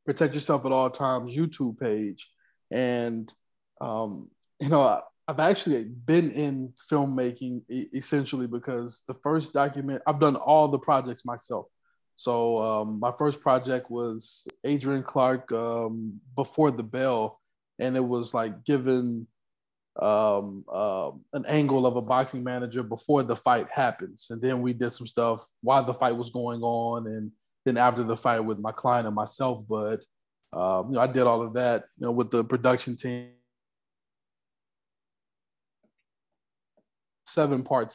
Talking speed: 150 wpm